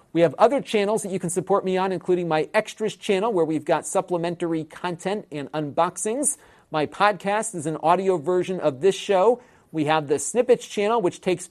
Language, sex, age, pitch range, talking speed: English, male, 40-59, 150-190 Hz, 195 wpm